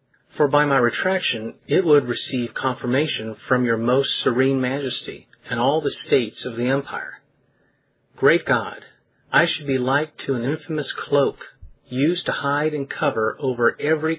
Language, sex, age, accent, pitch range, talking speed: English, male, 40-59, American, 120-155 Hz, 155 wpm